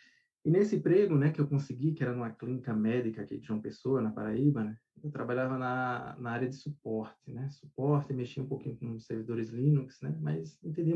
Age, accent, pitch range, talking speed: 20-39, Brazilian, 120-150 Hz, 210 wpm